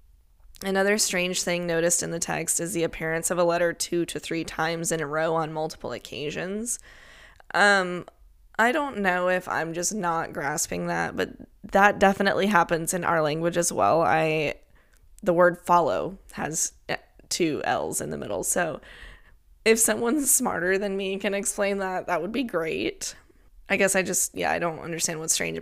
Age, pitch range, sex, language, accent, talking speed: 10-29, 165-190 Hz, female, English, American, 175 wpm